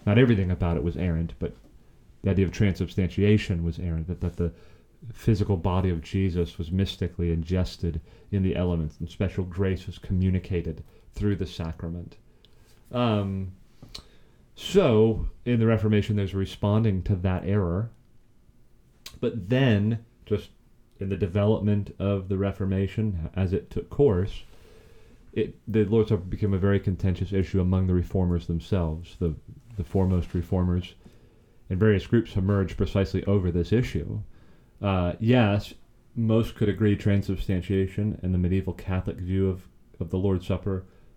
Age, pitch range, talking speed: 30-49, 90-105 Hz, 145 wpm